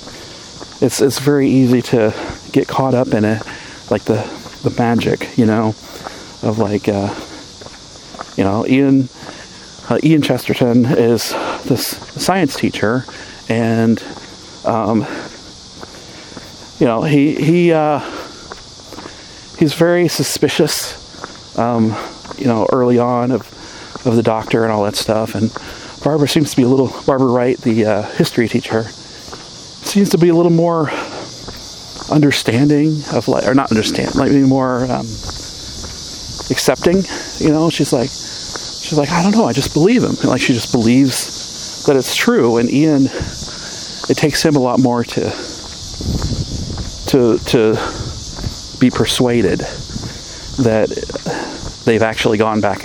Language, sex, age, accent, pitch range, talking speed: English, male, 40-59, American, 115-145 Hz, 135 wpm